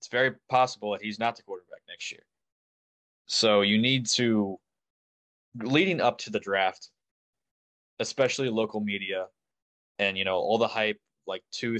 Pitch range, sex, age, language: 95-120 Hz, male, 20-39, English